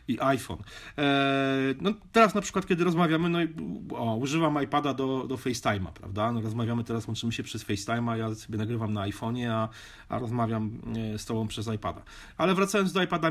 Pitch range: 115-160 Hz